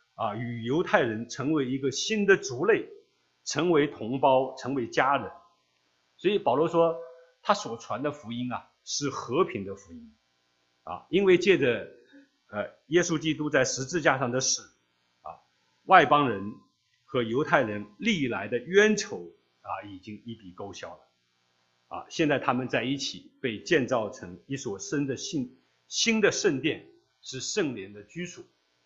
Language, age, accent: English, 50-69, Chinese